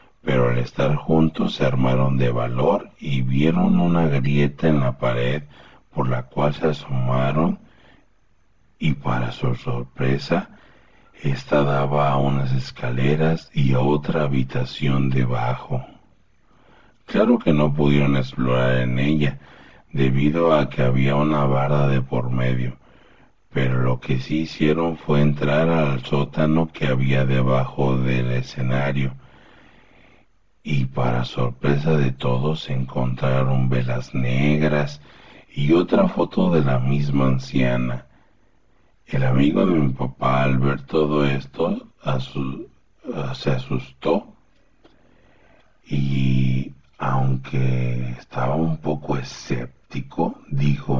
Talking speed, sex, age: 115 wpm, male, 60-79